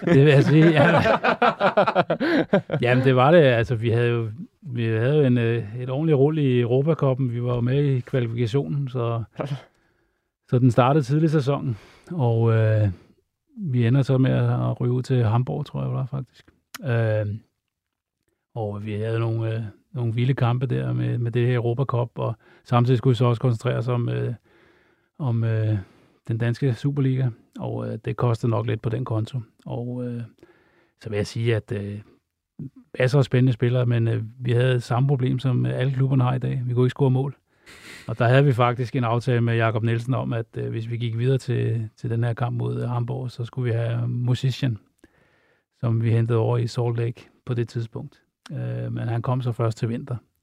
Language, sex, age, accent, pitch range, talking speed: Danish, male, 30-49, native, 115-130 Hz, 200 wpm